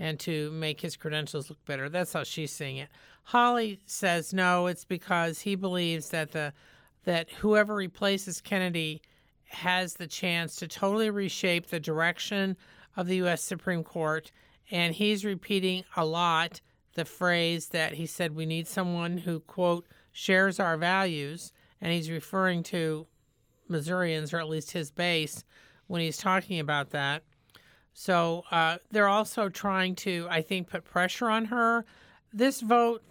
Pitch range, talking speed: 165-200 Hz, 155 wpm